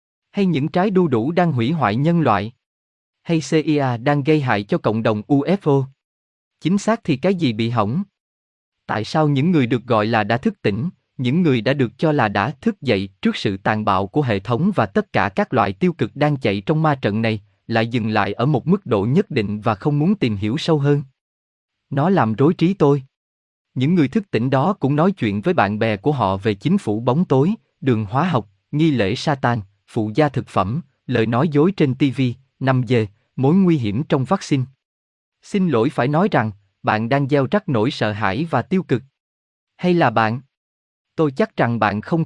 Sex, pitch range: male, 110-160 Hz